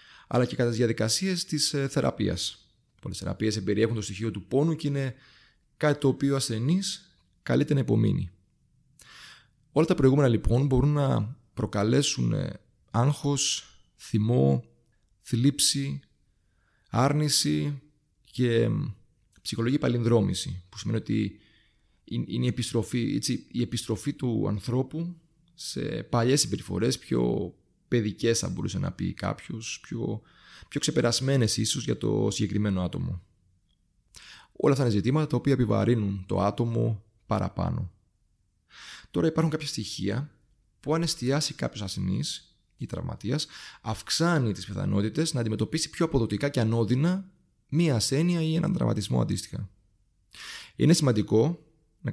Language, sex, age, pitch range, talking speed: Greek, male, 30-49, 105-145 Hz, 120 wpm